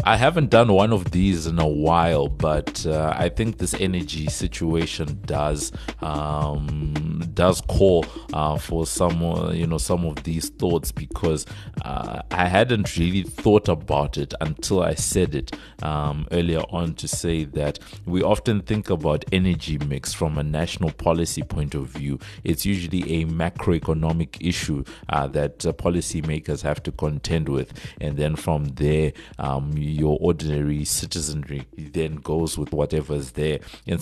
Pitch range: 75-85 Hz